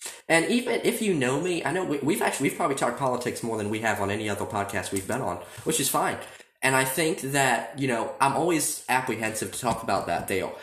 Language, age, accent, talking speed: English, 20-39, American, 245 wpm